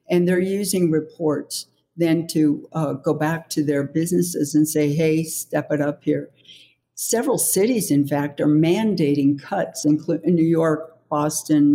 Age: 60-79